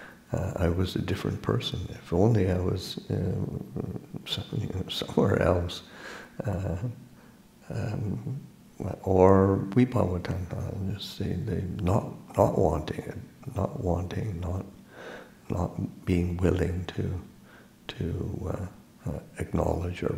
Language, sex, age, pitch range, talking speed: English, male, 60-79, 85-105 Hz, 105 wpm